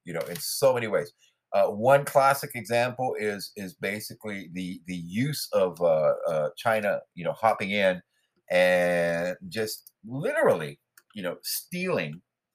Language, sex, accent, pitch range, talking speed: English, male, American, 85-115 Hz, 145 wpm